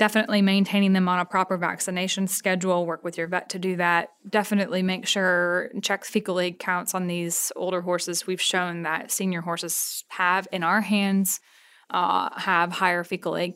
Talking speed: 180 wpm